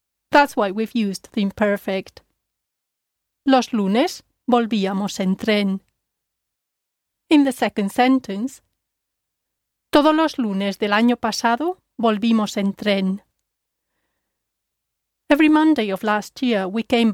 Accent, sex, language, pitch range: Spanish, female, English, 200-270 Hz